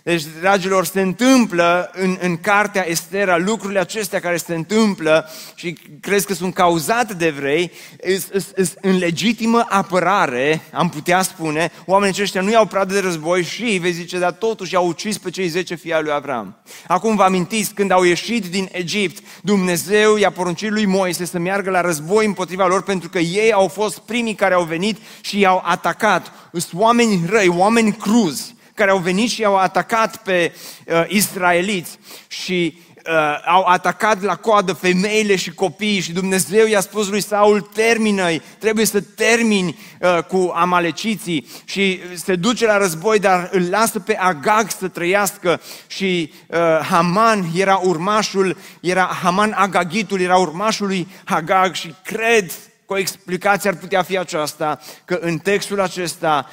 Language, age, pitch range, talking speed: Romanian, 30-49, 170-205 Hz, 160 wpm